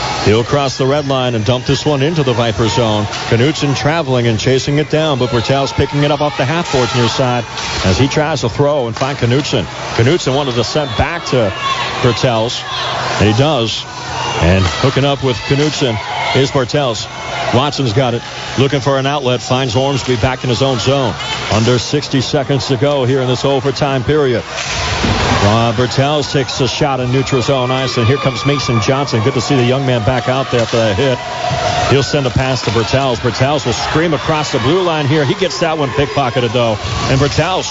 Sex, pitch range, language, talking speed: male, 120-145 Hz, English, 205 wpm